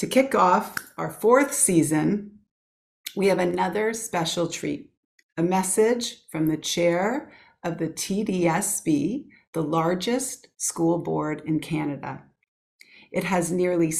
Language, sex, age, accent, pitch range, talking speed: English, female, 40-59, American, 160-195 Hz, 120 wpm